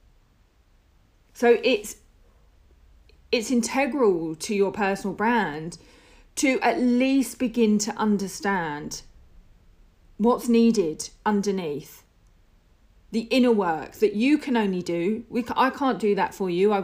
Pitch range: 180-230 Hz